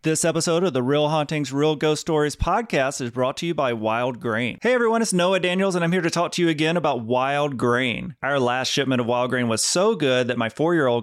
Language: English